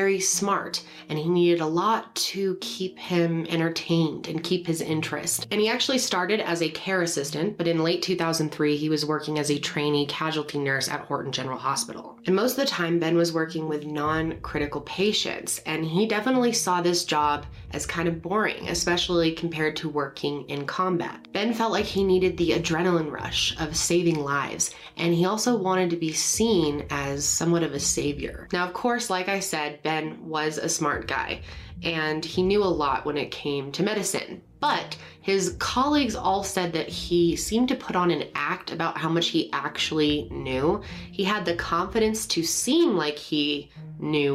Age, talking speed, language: 20-39, 185 wpm, English